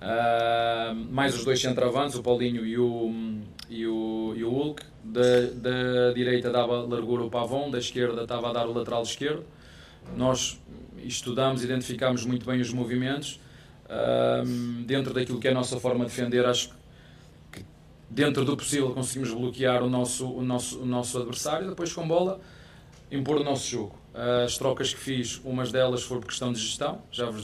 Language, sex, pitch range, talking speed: Portuguese, male, 120-135 Hz, 175 wpm